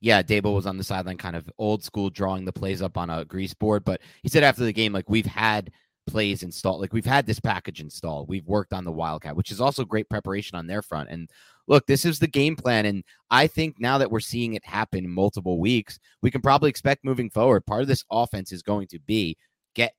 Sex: male